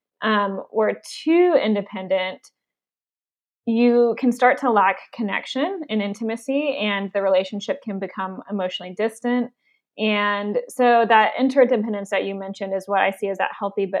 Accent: American